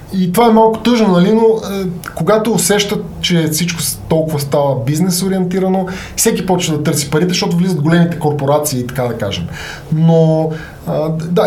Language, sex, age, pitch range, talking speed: Bulgarian, male, 20-39, 145-175 Hz, 155 wpm